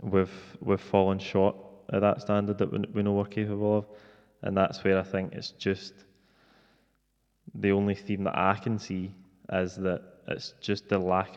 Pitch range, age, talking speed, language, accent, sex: 95-105 Hz, 20-39, 180 wpm, English, British, male